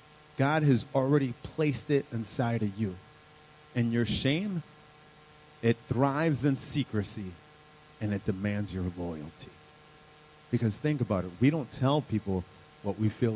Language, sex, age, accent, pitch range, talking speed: English, male, 30-49, American, 100-150 Hz, 140 wpm